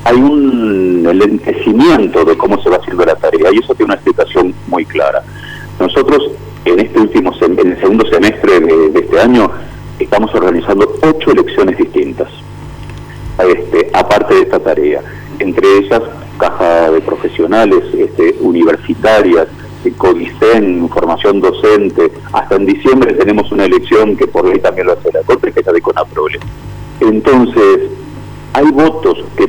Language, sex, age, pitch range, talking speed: Spanish, male, 40-59, 355-410 Hz, 145 wpm